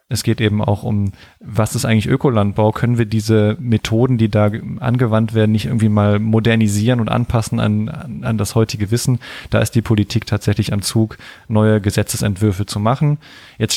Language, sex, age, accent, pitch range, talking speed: German, male, 20-39, German, 105-120 Hz, 175 wpm